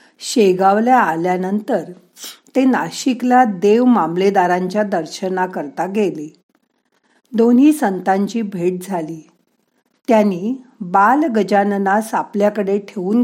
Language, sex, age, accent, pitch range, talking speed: Marathi, female, 50-69, native, 185-245 Hz, 75 wpm